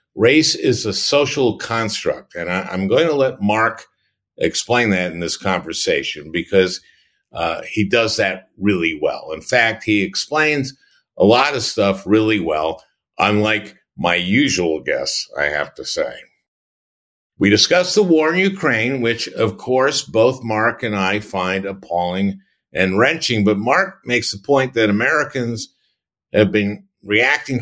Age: 50-69